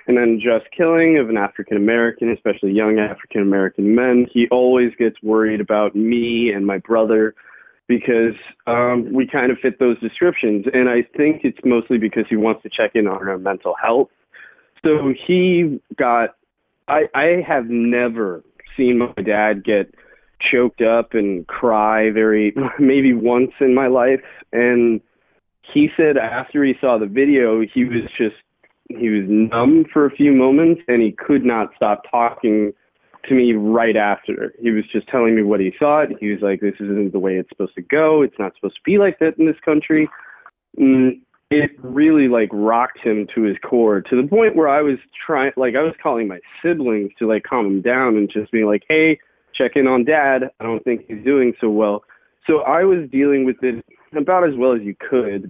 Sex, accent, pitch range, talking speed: male, American, 110-135 Hz, 190 wpm